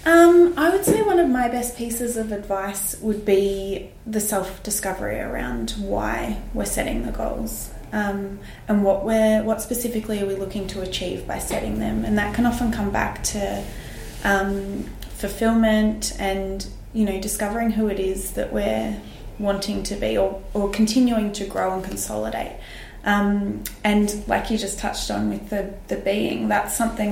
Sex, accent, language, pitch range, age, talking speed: female, Australian, English, 190-220 Hz, 20-39, 170 wpm